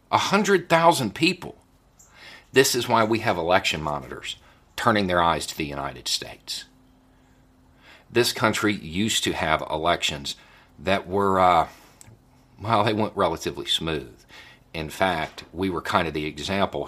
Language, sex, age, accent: English, male, 50-69, American